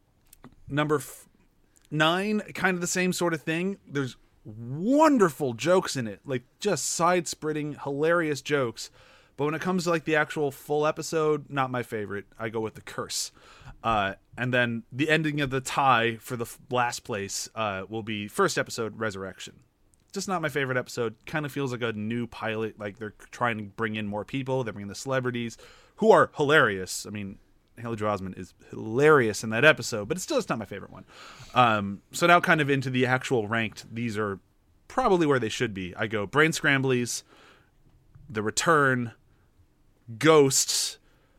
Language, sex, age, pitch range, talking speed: English, male, 30-49, 110-155 Hz, 180 wpm